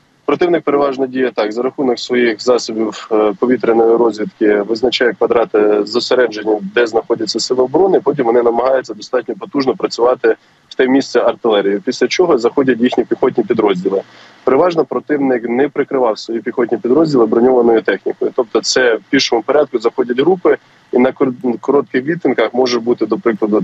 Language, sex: Ukrainian, male